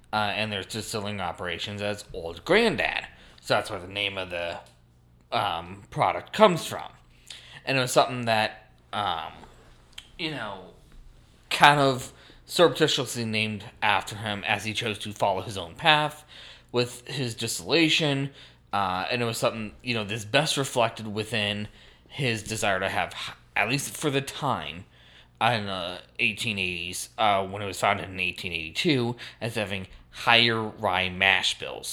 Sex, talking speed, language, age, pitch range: male, 150 wpm, English, 20-39, 95-120 Hz